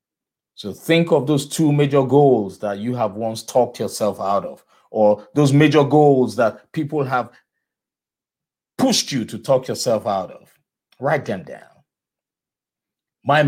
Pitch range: 105-140 Hz